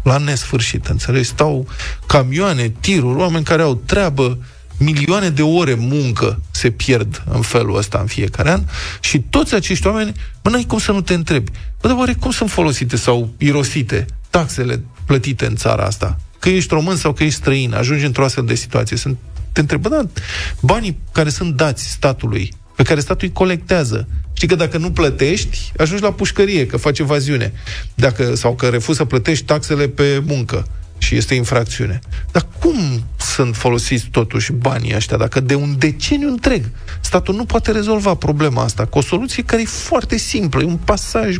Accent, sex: native, male